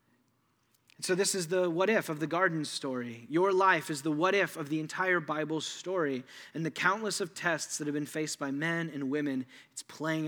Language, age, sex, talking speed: English, 30-49, male, 200 wpm